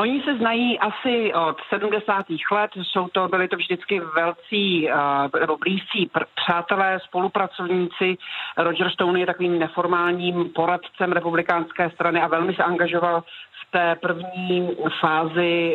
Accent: native